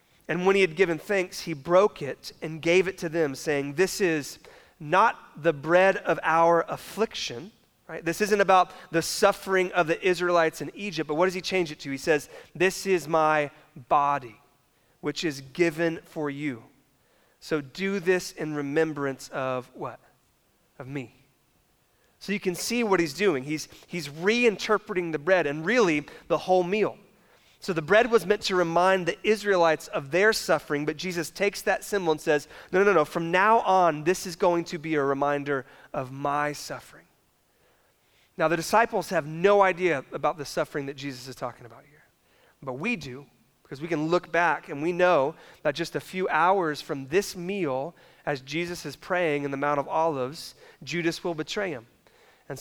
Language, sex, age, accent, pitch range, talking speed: English, male, 30-49, American, 145-185 Hz, 185 wpm